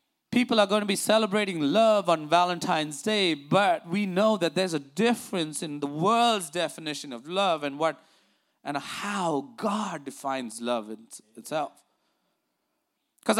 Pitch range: 175-240 Hz